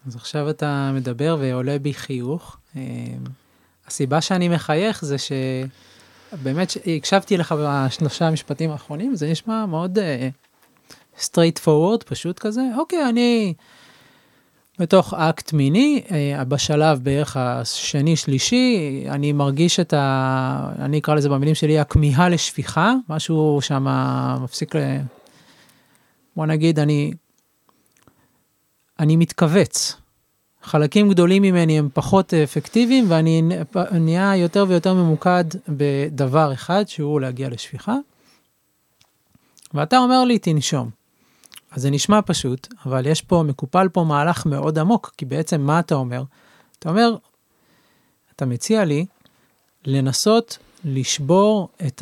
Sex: male